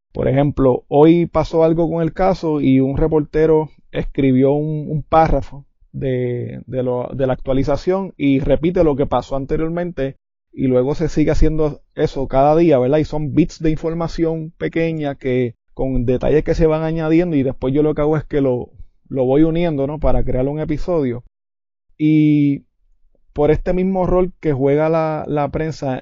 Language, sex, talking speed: Spanish, male, 175 wpm